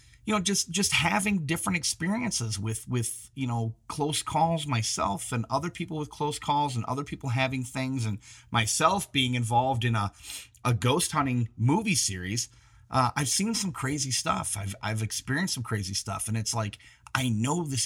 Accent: American